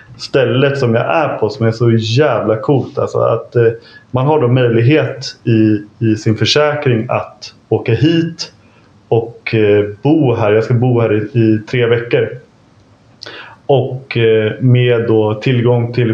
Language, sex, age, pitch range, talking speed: English, male, 30-49, 110-125 Hz, 155 wpm